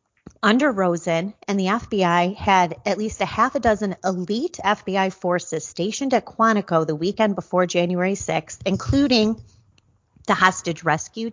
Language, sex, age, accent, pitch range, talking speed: English, female, 30-49, American, 165-210 Hz, 145 wpm